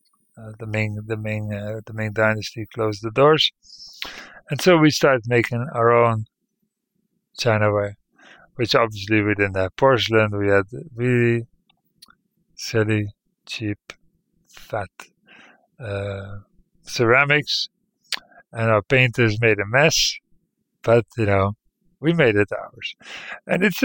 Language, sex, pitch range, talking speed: English, male, 110-150 Hz, 125 wpm